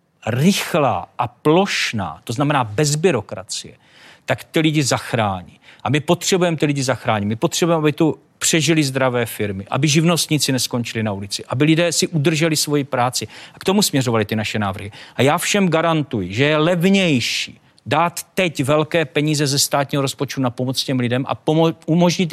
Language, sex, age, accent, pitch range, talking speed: Czech, male, 40-59, native, 125-165 Hz, 170 wpm